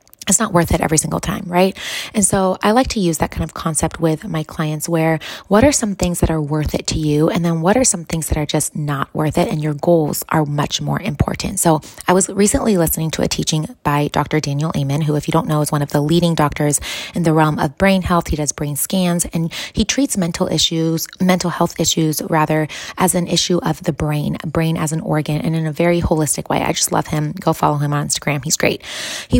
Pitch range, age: 155-180 Hz, 20-39